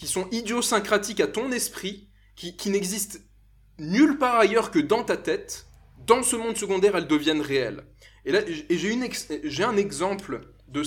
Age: 20-39